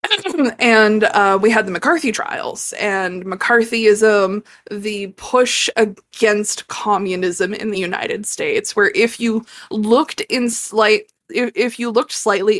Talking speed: 135 wpm